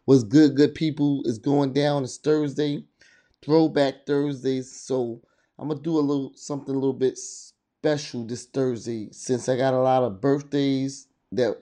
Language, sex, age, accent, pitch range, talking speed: English, male, 20-39, American, 125-140 Hz, 170 wpm